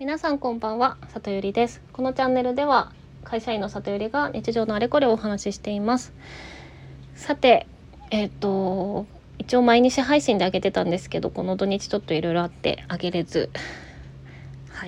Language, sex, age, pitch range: Japanese, female, 20-39, 185-230 Hz